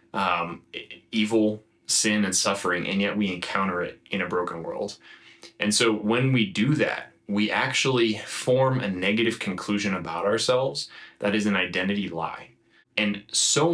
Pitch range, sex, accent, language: 100-120 Hz, male, American, English